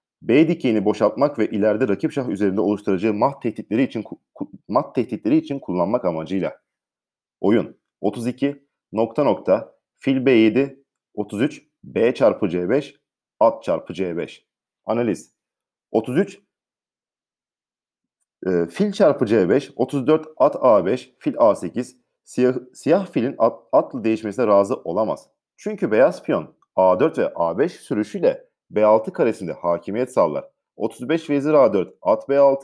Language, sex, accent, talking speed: Turkish, male, native, 120 wpm